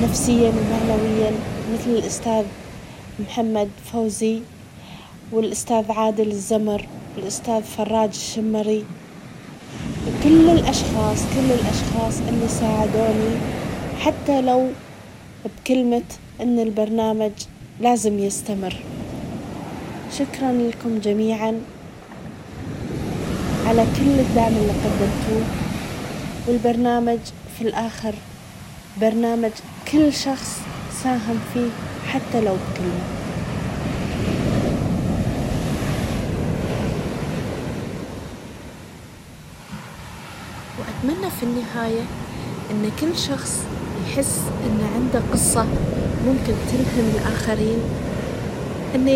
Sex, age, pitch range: female, 30-49, 215-245 Hz